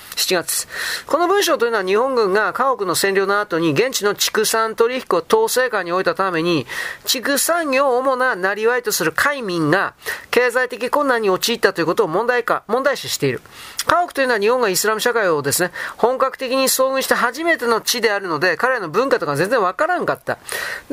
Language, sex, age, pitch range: Japanese, male, 40-59, 215-290 Hz